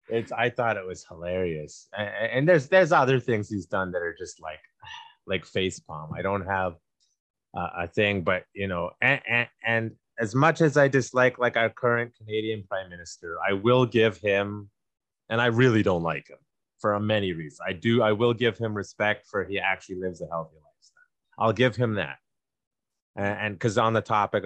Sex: male